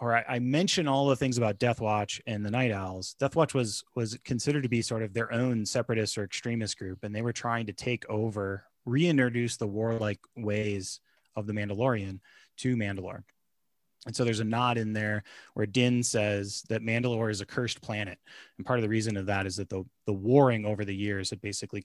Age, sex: 30-49, male